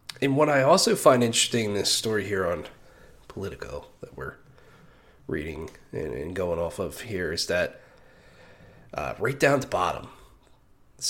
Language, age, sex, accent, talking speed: English, 30-49, male, American, 150 wpm